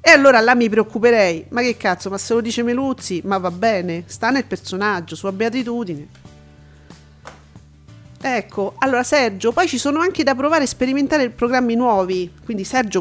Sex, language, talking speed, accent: female, Italian, 165 wpm, native